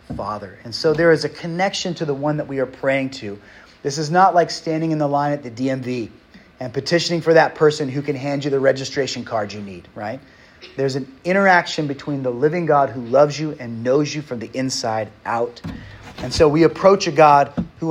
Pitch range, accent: 125-165 Hz, American